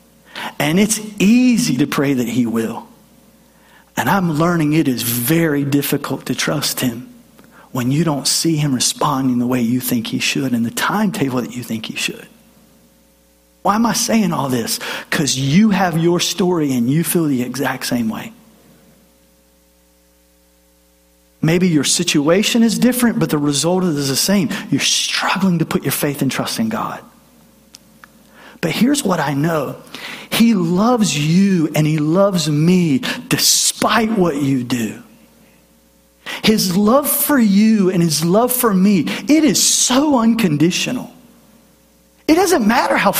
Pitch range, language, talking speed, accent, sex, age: 145-230 Hz, English, 155 wpm, American, male, 40-59